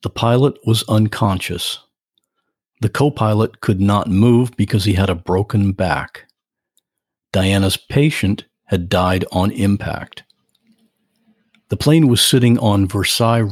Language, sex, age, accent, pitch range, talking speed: English, male, 50-69, American, 95-120 Hz, 120 wpm